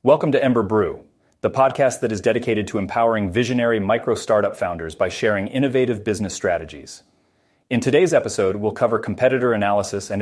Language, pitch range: English, 95-115 Hz